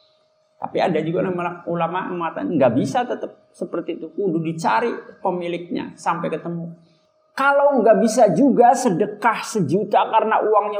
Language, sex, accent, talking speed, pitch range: Indonesian, male, native, 120 wpm, 175-245 Hz